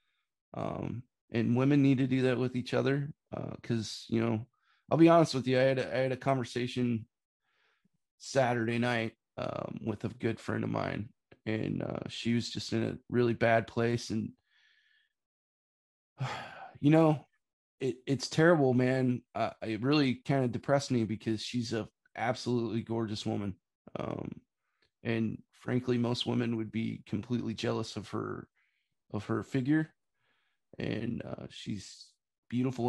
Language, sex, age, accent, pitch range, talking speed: English, male, 20-39, American, 115-130 Hz, 145 wpm